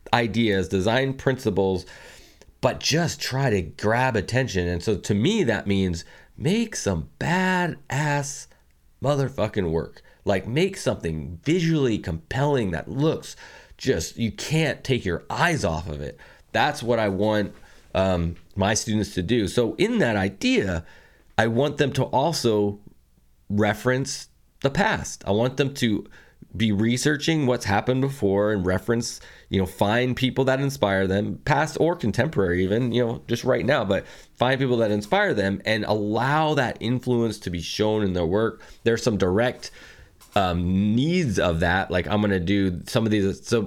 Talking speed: 160 wpm